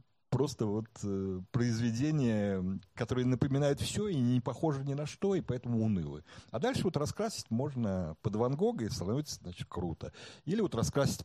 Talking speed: 165 wpm